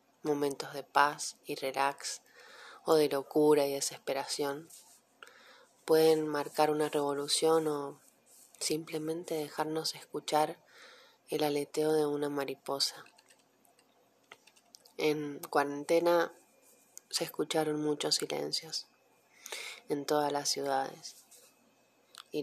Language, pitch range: Spanish, 145-160 Hz